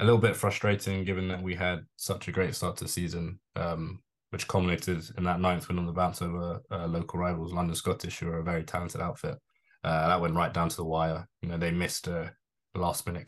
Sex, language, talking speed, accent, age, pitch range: male, English, 230 wpm, British, 20-39, 85-95 Hz